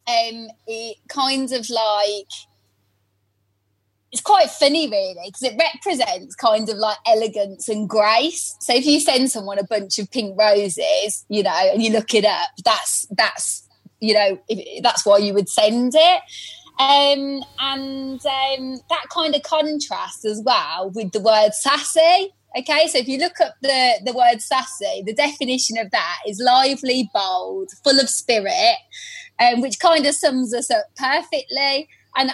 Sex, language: female, English